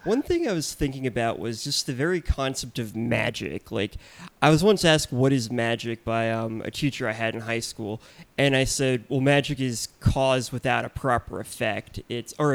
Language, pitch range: English, 115-140 Hz